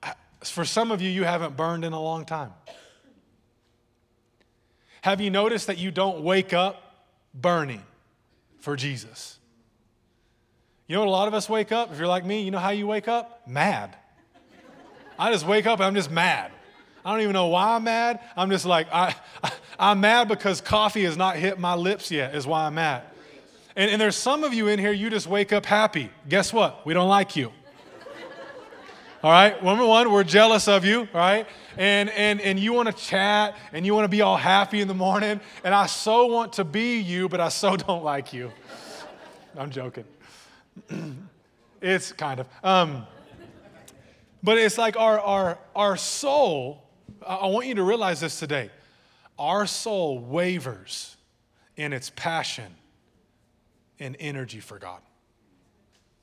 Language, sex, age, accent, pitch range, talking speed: English, male, 20-39, American, 130-210 Hz, 175 wpm